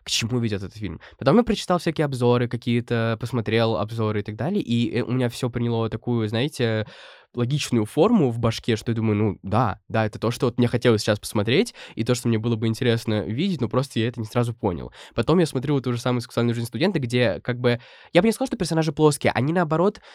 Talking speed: 230 wpm